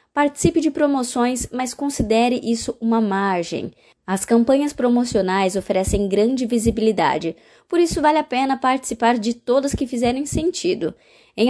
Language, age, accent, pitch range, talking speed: Portuguese, 20-39, Brazilian, 210-270 Hz, 135 wpm